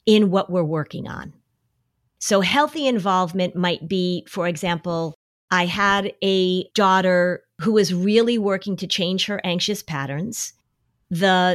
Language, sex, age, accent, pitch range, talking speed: English, female, 40-59, American, 175-220 Hz, 135 wpm